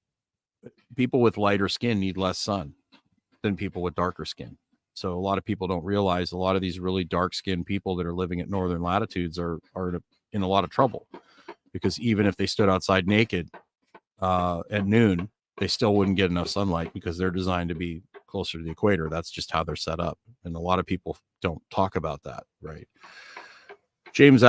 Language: English